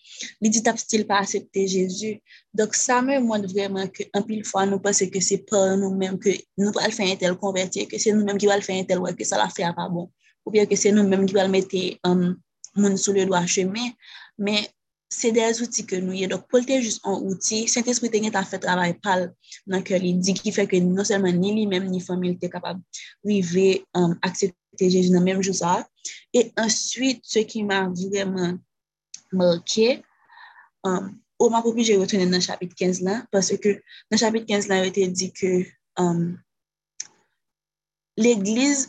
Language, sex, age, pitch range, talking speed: French, female, 20-39, 185-215 Hz, 210 wpm